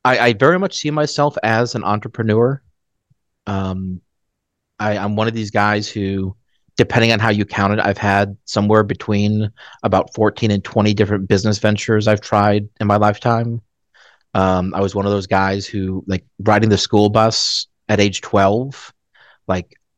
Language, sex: English, male